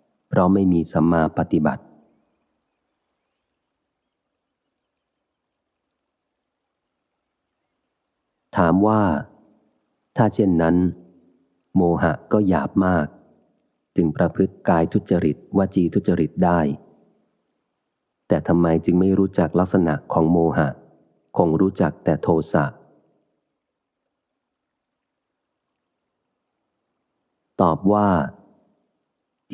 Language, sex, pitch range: Thai, male, 80-95 Hz